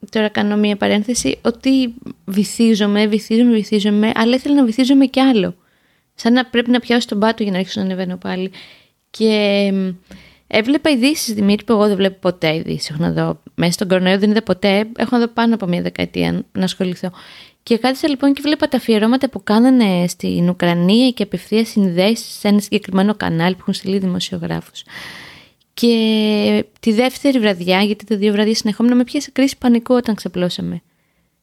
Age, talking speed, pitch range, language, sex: 20-39, 175 wpm, 190-245 Hz, Greek, female